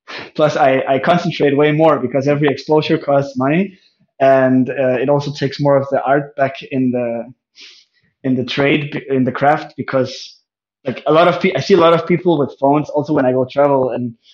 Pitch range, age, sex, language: 130-150 Hz, 20-39, male, English